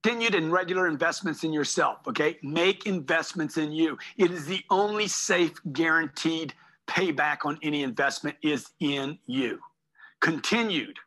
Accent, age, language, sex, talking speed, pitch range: American, 50-69, English, male, 135 wpm, 155-235 Hz